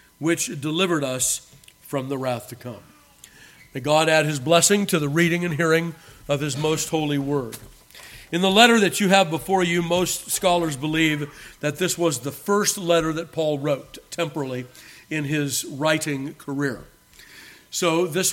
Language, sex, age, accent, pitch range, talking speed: English, male, 50-69, American, 140-175 Hz, 165 wpm